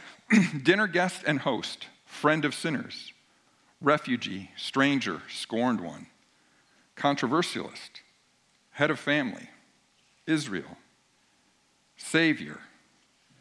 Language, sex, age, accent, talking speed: English, male, 50-69, American, 75 wpm